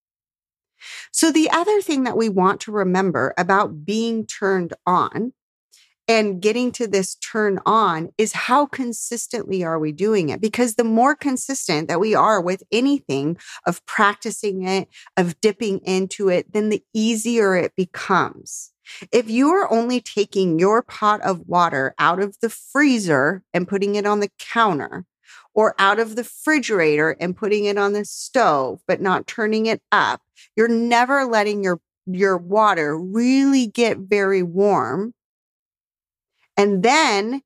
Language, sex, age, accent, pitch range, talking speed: English, female, 40-59, American, 190-260 Hz, 150 wpm